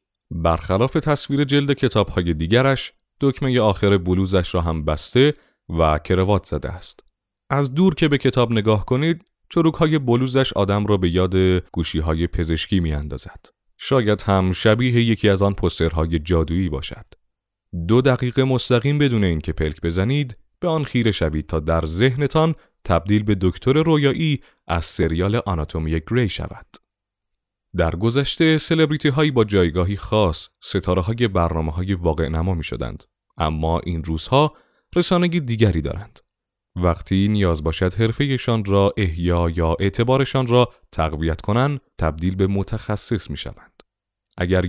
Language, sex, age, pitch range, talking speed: Persian, male, 30-49, 85-125 Hz, 140 wpm